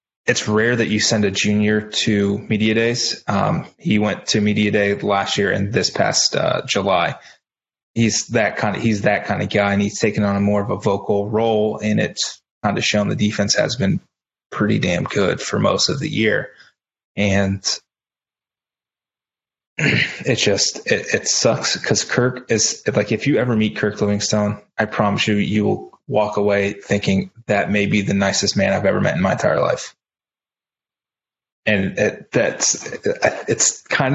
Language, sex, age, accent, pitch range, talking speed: English, male, 20-39, American, 100-110 Hz, 175 wpm